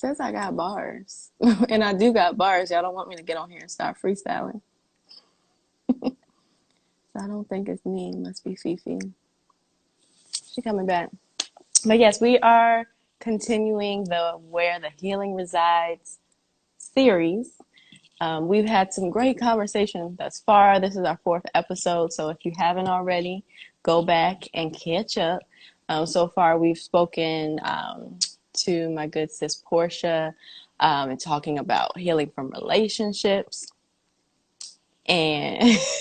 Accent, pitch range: American, 170-225 Hz